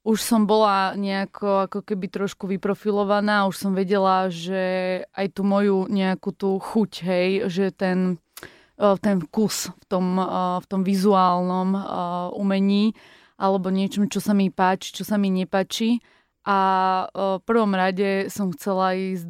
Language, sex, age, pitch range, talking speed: Slovak, female, 20-39, 185-200 Hz, 140 wpm